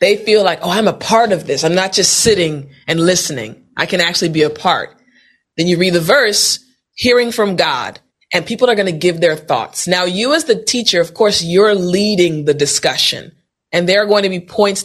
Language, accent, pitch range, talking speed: English, American, 160-215 Hz, 220 wpm